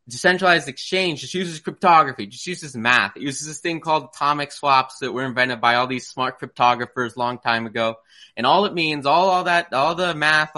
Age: 20-39